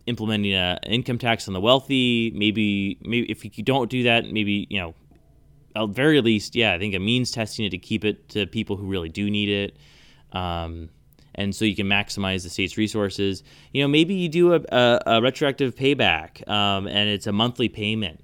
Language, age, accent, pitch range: English, 20-39, American, 100-125 Hz